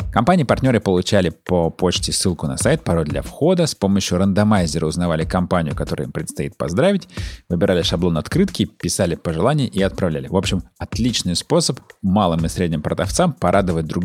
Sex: male